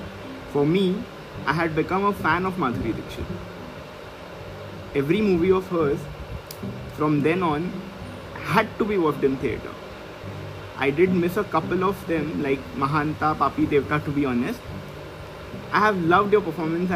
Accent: native